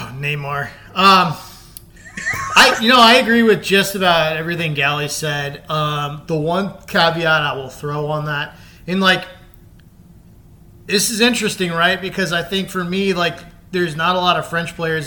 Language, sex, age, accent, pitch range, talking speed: English, male, 30-49, American, 150-180 Hz, 165 wpm